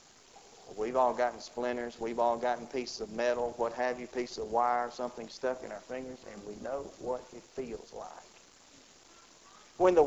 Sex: male